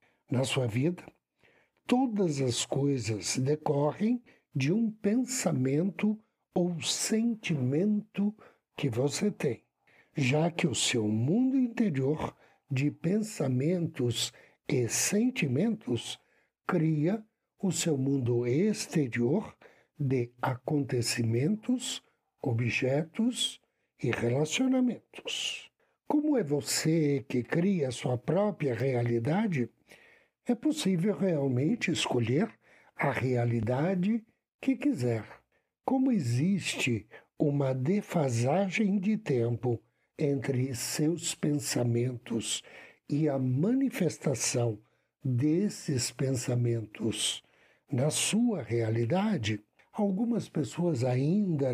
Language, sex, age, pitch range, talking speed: Portuguese, male, 60-79, 125-205 Hz, 85 wpm